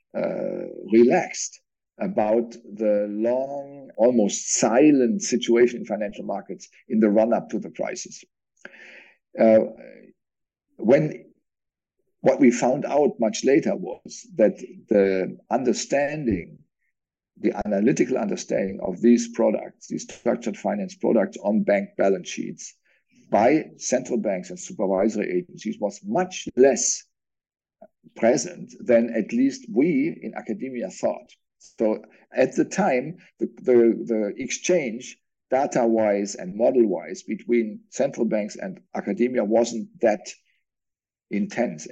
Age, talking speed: 50-69, 110 wpm